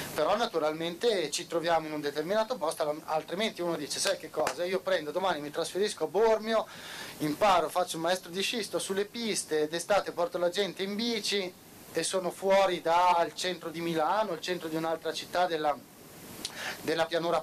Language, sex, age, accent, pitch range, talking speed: Italian, male, 30-49, native, 155-200 Hz, 170 wpm